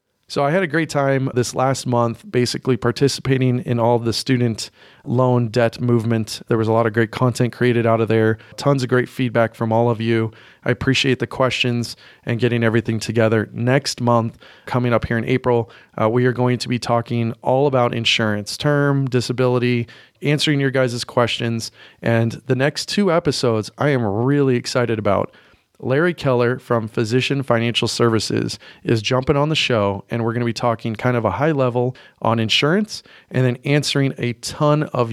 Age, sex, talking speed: 30-49, male, 185 wpm